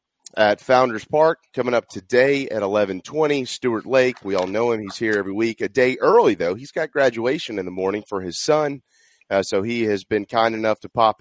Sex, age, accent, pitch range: male, 30-49, American, 100-125 Hz